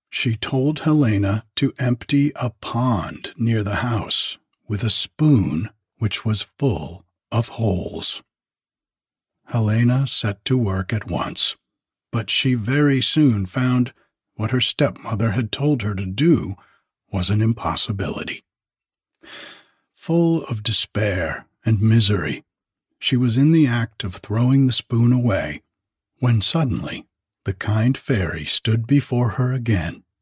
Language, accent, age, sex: English, American, 60-79, male